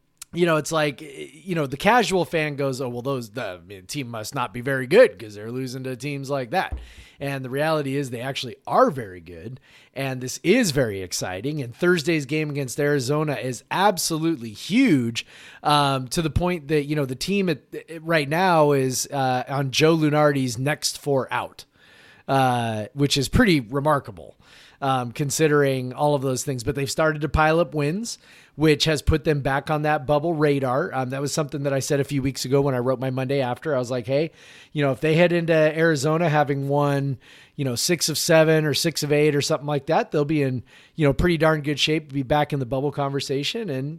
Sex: male